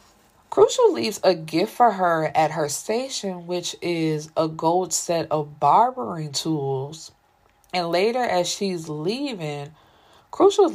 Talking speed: 130 wpm